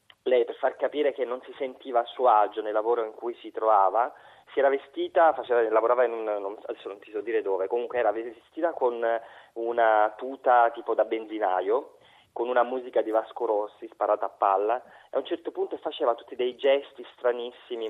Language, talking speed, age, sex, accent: Italian, 200 wpm, 30-49, male, native